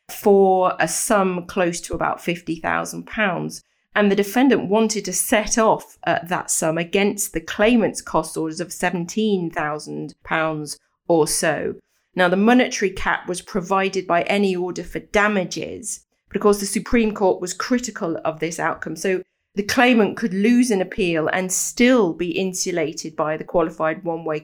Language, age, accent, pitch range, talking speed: English, 40-59, British, 170-205 Hz, 150 wpm